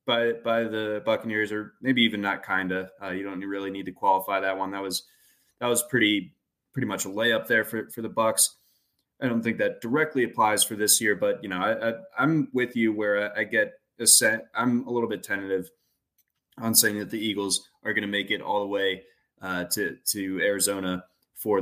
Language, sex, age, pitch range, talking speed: English, male, 20-39, 100-125 Hz, 215 wpm